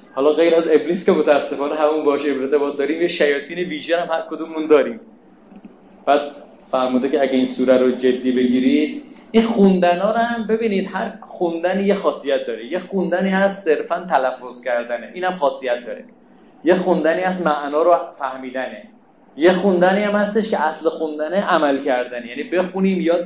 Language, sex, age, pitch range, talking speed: Persian, male, 30-49, 135-190 Hz, 170 wpm